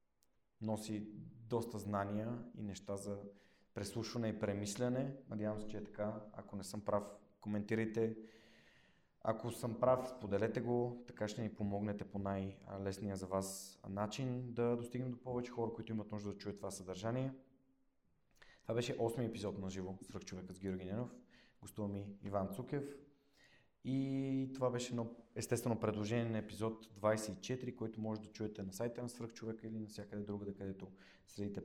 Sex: male